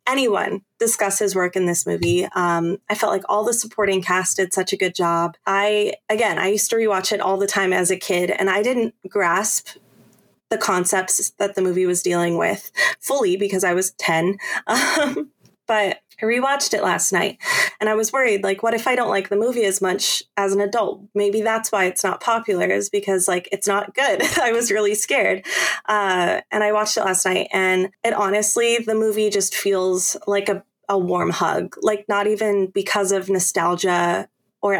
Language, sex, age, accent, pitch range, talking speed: English, female, 20-39, American, 185-215 Hz, 200 wpm